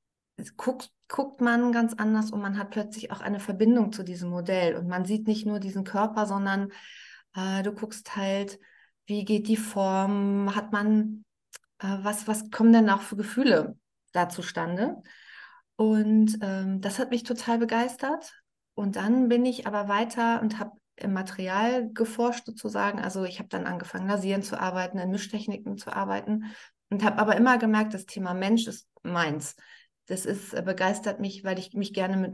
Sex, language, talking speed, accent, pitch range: female, German, 175 wpm, German, 195-230 Hz